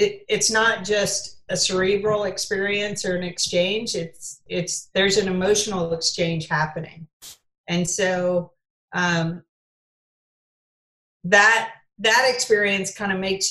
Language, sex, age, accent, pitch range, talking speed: English, female, 40-59, American, 170-200 Hz, 115 wpm